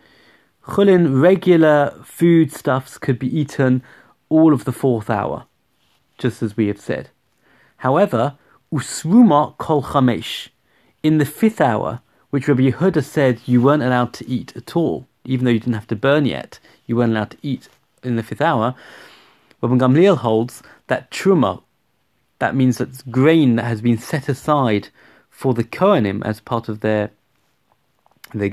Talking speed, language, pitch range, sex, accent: 155 wpm, English, 115-145 Hz, male, British